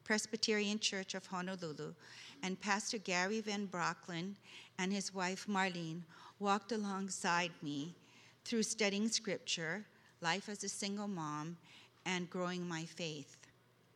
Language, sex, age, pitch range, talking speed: English, female, 50-69, 175-205 Hz, 120 wpm